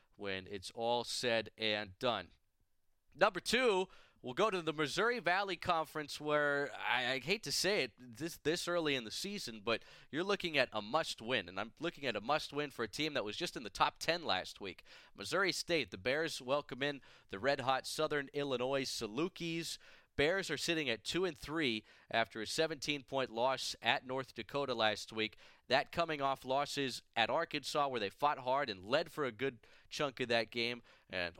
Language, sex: English, male